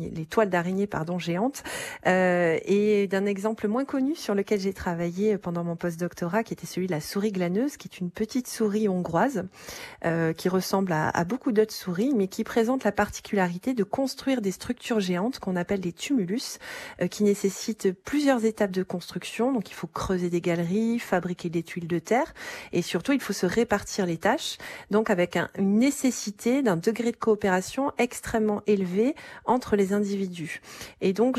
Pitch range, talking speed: 185-230 Hz, 180 wpm